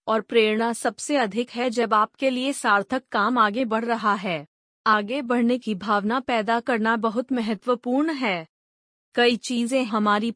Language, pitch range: Hindi, 215-255 Hz